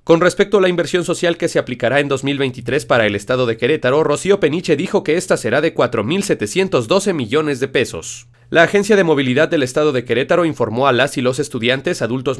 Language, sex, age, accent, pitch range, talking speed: Spanish, male, 30-49, Mexican, 130-180 Hz, 205 wpm